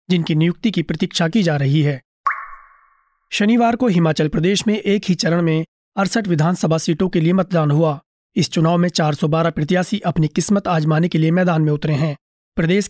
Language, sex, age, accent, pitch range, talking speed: Hindi, male, 30-49, native, 155-185 Hz, 180 wpm